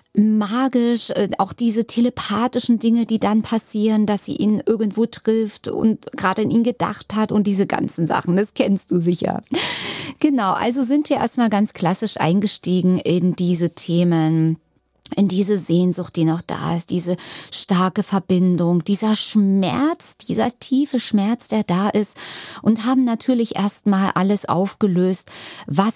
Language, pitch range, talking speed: German, 180-225 Hz, 145 wpm